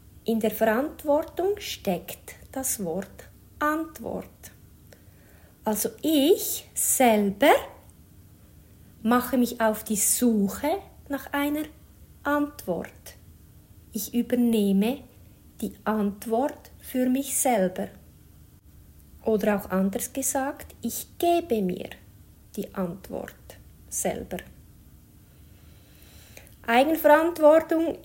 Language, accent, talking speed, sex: English, Swiss, 75 wpm, female